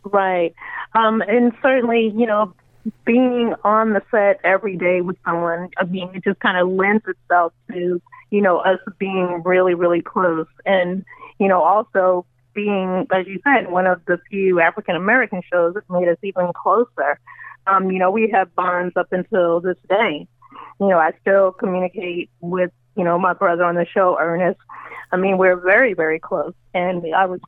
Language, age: English, 30-49